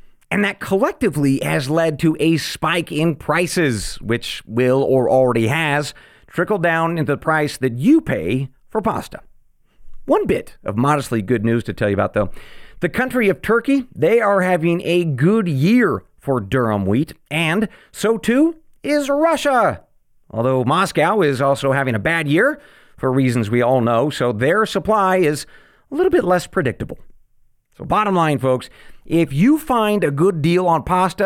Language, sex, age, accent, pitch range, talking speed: English, male, 40-59, American, 125-185 Hz, 170 wpm